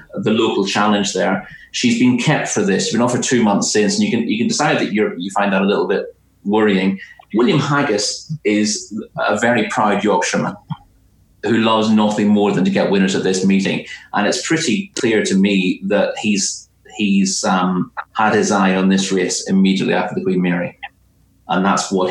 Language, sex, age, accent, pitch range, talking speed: English, male, 30-49, British, 95-110 Hz, 200 wpm